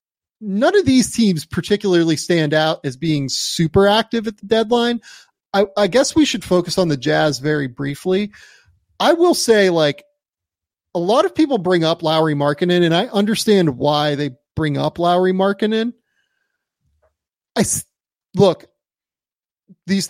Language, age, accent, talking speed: English, 30-49, American, 145 wpm